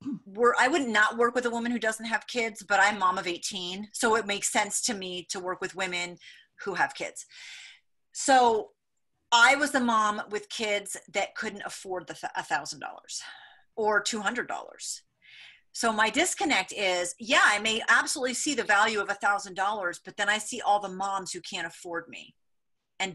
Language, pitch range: English, 190-235 Hz